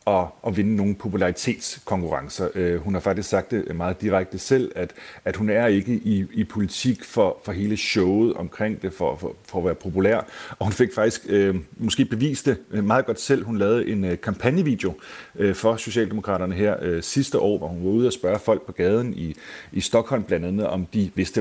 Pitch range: 95-120 Hz